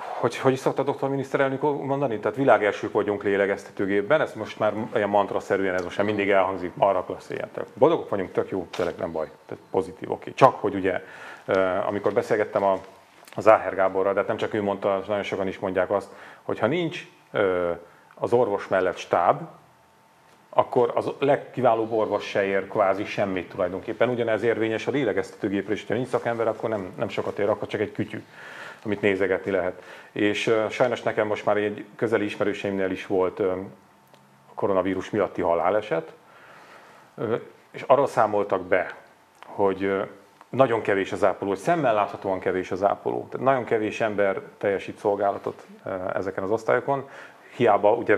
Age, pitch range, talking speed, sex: 30-49, 95-110 Hz, 170 wpm, male